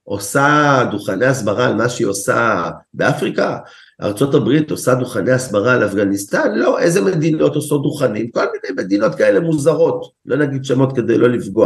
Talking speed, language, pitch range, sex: 155 wpm, Hebrew, 130-160 Hz, male